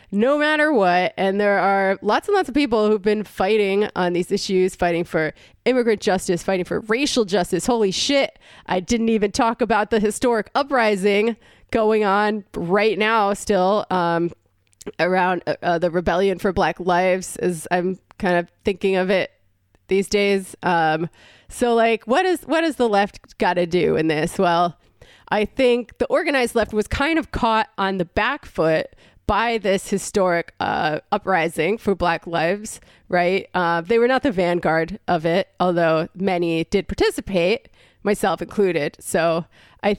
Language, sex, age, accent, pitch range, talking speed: English, female, 20-39, American, 175-215 Hz, 165 wpm